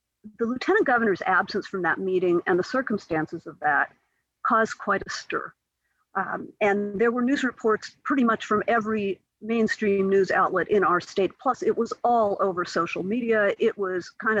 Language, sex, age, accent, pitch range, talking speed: English, female, 50-69, American, 195-255 Hz, 175 wpm